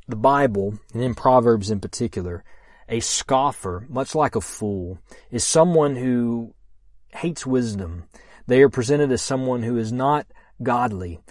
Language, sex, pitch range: English, male, 110-130 Hz